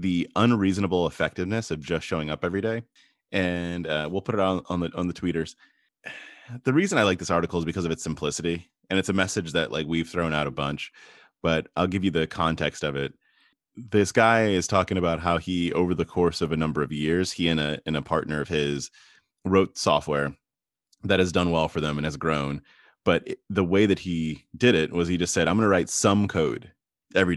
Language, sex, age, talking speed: English, male, 30-49, 225 wpm